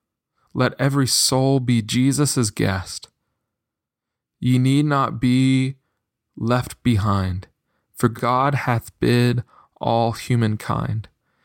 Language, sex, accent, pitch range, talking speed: English, male, American, 115-145 Hz, 95 wpm